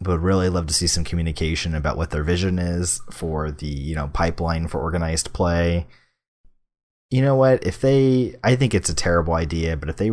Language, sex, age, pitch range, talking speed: English, male, 30-49, 75-95 Hz, 200 wpm